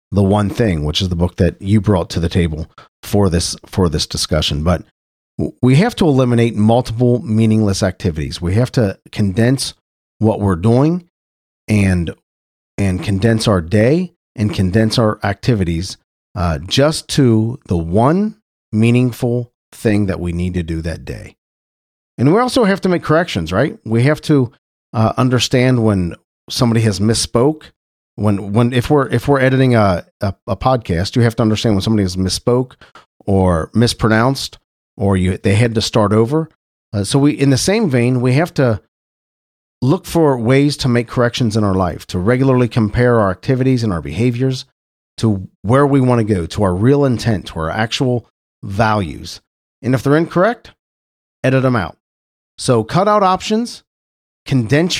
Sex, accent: male, American